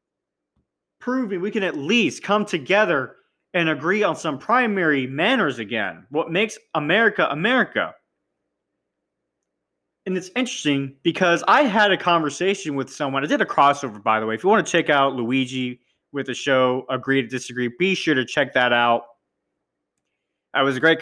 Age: 30-49